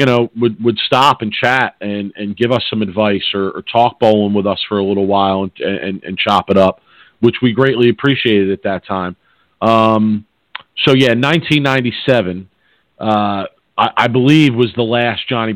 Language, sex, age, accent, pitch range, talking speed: English, male, 40-59, American, 105-120 Hz, 195 wpm